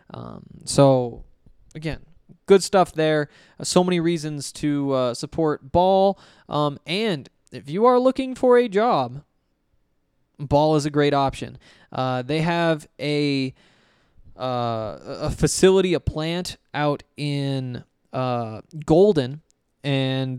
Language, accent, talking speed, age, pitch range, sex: English, American, 125 wpm, 20-39, 135-175 Hz, male